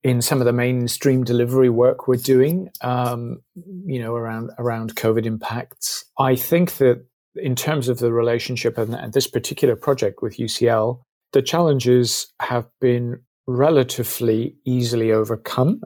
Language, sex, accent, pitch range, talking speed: English, male, British, 115-130 Hz, 140 wpm